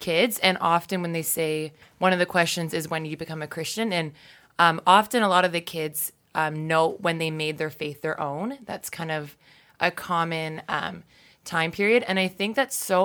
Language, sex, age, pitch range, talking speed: English, female, 20-39, 155-180 Hz, 210 wpm